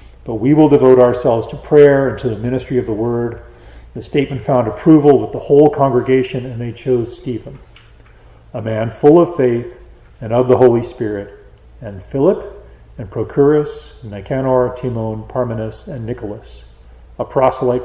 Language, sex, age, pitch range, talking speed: English, male, 40-59, 105-130 Hz, 160 wpm